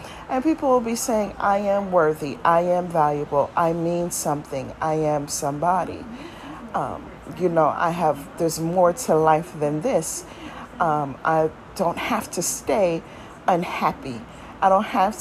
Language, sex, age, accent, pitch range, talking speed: English, female, 40-59, American, 170-230 Hz, 150 wpm